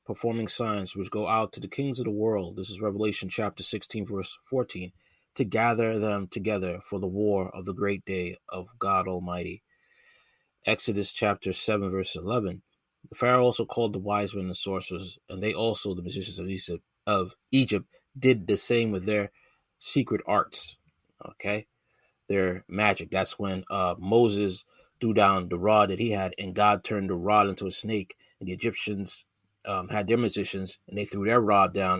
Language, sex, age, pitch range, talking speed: English, male, 20-39, 95-110 Hz, 180 wpm